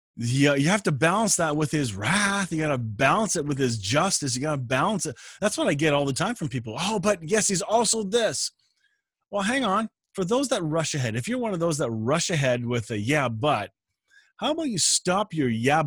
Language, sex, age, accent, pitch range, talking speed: English, male, 30-49, American, 135-210 Hz, 240 wpm